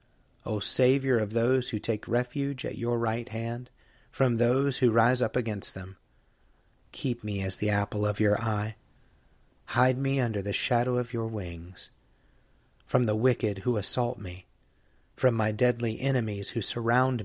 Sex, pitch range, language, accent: male, 100-125 Hz, English, American